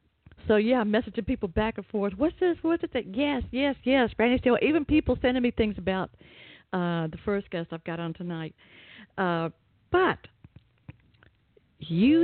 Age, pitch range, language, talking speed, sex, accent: 50-69, 170-225 Hz, English, 165 wpm, female, American